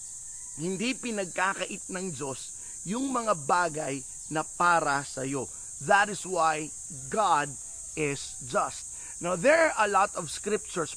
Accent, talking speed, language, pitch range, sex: native, 130 wpm, Filipino, 155-210 Hz, male